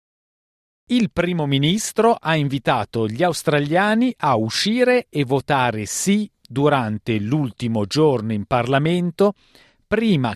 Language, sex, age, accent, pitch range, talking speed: Italian, male, 40-59, native, 115-160 Hz, 105 wpm